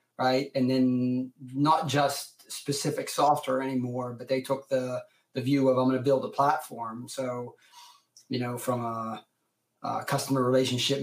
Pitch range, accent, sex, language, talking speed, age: 125-140 Hz, American, male, English, 160 wpm, 30-49